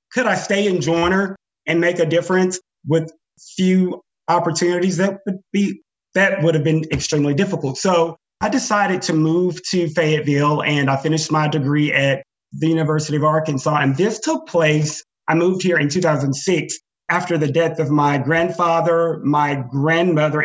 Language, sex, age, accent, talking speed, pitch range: English, male, 30-49, American, 160 wpm, 145-175 Hz